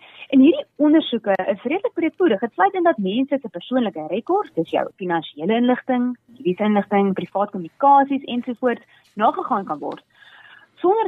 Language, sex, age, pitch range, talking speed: English, female, 20-39, 195-280 Hz, 135 wpm